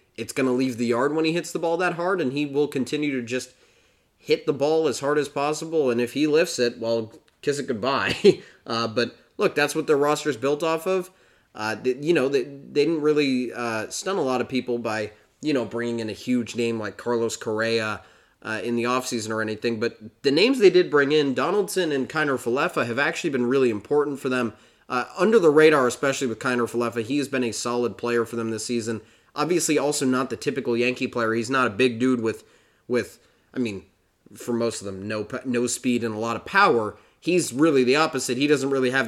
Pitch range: 115-140 Hz